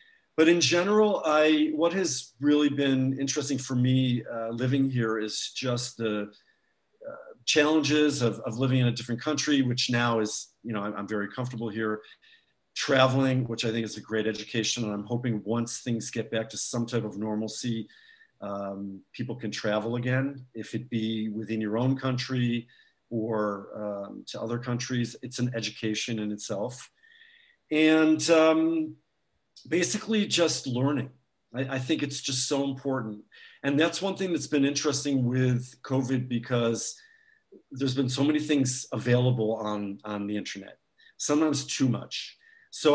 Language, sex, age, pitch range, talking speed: English, male, 50-69, 115-145 Hz, 160 wpm